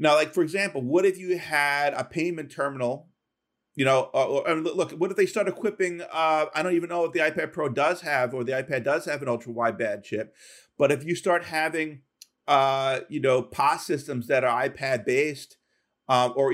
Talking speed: 210 wpm